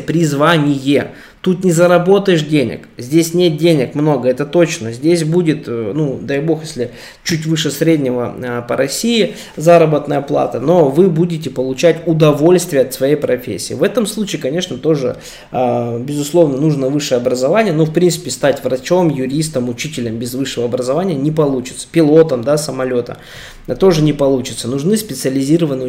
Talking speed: 140 wpm